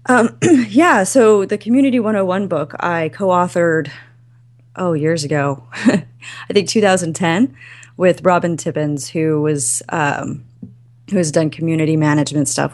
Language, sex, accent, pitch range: English, female, American, 145-165 Hz